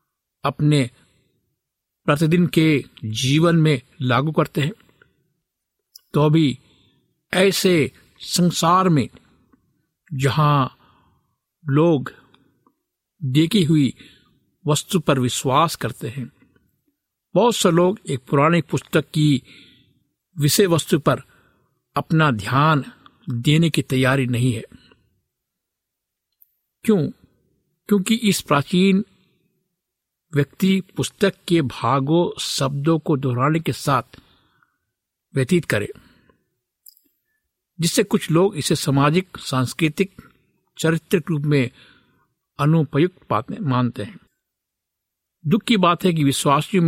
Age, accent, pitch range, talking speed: 50-69, native, 130-165 Hz, 90 wpm